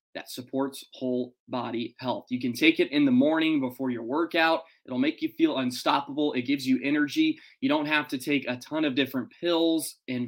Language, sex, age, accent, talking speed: English, male, 20-39, American, 205 wpm